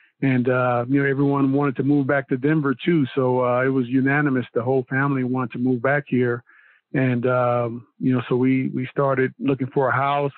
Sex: male